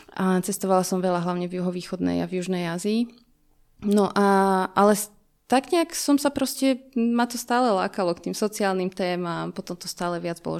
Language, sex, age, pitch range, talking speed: Slovak, female, 20-39, 185-210 Hz, 180 wpm